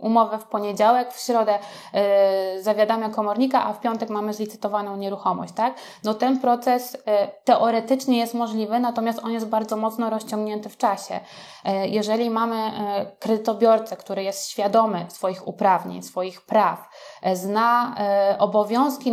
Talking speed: 125 wpm